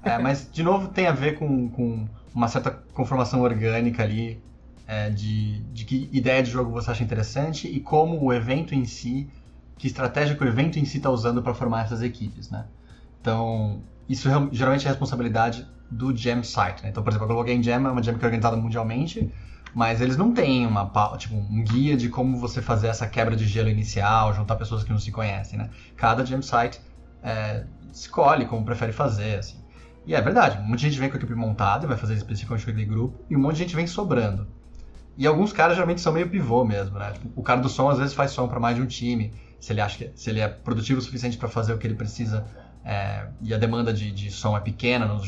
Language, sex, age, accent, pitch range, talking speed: Portuguese, male, 20-39, Brazilian, 110-130 Hz, 230 wpm